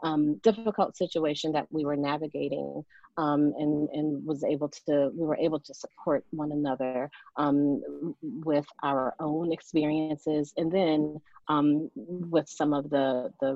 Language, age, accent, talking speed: English, 30-49, American, 145 wpm